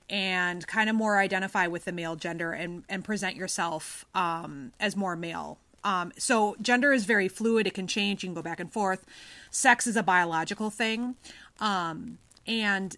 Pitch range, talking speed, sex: 180-230 Hz, 180 wpm, female